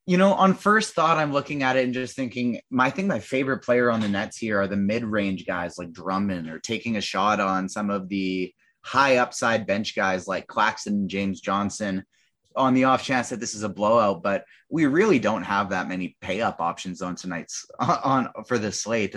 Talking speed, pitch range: 220 wpm, 95-120 Hz